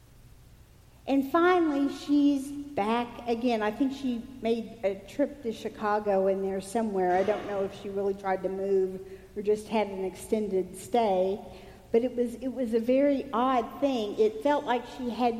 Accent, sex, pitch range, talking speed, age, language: American, female, 200-275 Hz, 175 wpm, 50-69, English